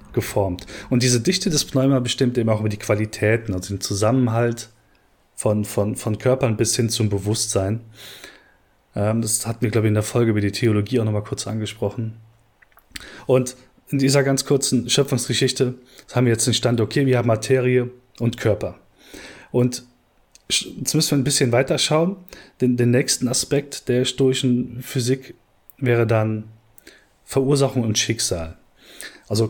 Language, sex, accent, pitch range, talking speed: German, male, German, 105-130 Hz, 155 wpm